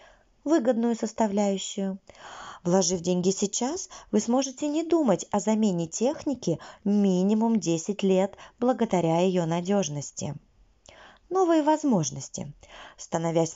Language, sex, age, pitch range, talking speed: Russian, female, 20-39, 175-220 Hz, 95 wpm